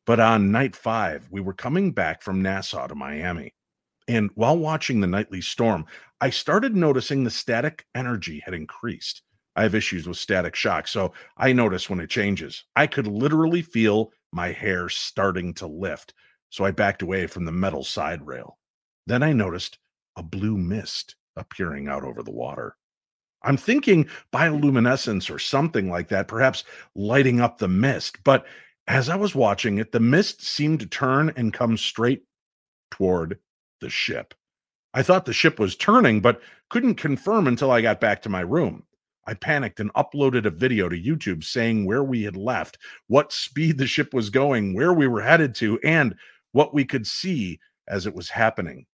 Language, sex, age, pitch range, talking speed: English, male, 50-69, 100-140 Hz, 180 wpm